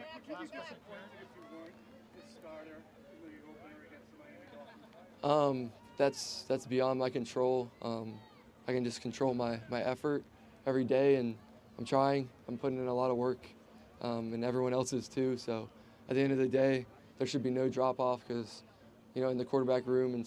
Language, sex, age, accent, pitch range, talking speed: English, male, 20-39, American, 115-130 Hz, 155 wpm